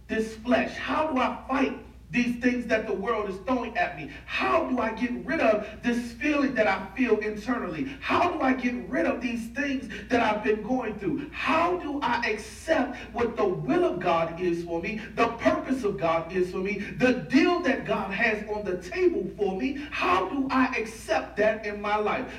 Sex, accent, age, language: male, American, 40-59, English